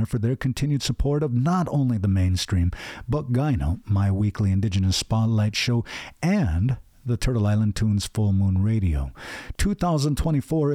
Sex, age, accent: male, 50-69, American